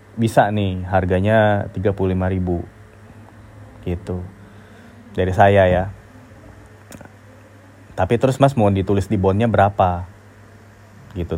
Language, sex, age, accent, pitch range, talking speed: Indonesian, male, 20-39, native, 95-110 Hz, 90 wpm